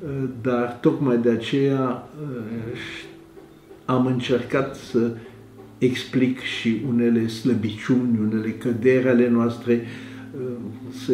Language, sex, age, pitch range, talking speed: Romanian, male, 60-79, 115-130 Hz, 85 wpm